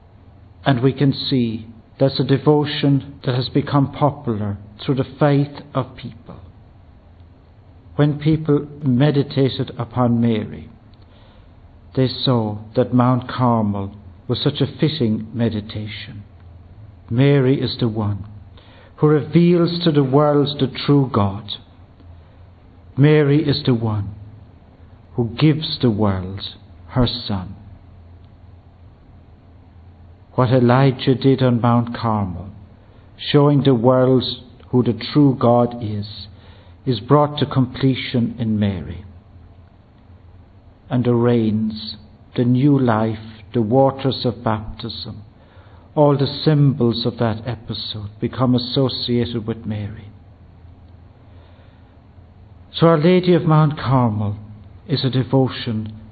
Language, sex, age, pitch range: English, male, 60-79, 100-130 Hz